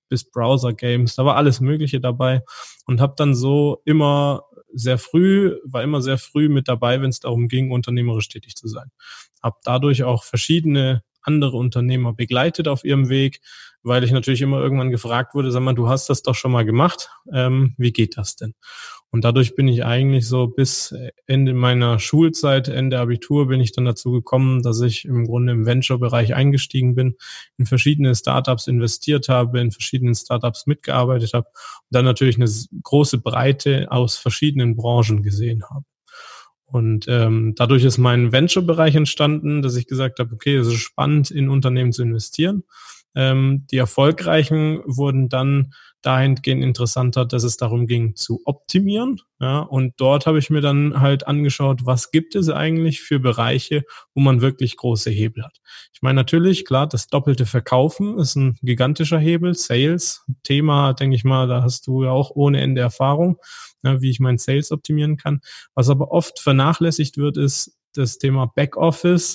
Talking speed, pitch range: 170 wpm, 125-145 Hz